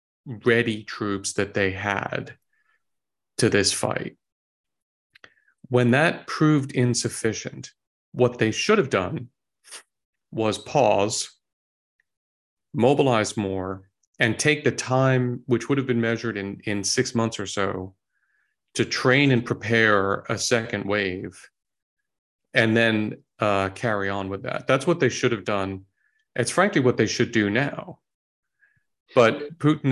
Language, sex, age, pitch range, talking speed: English, male, 40-59, 100-125 Hz, 130 wpm